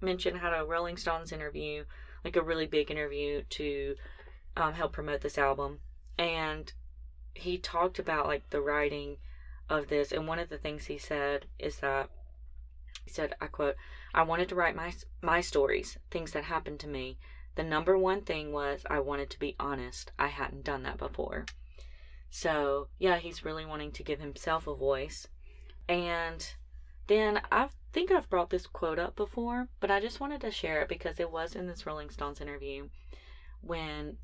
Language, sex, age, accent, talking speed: English, female, 20-39, American, 180 wpm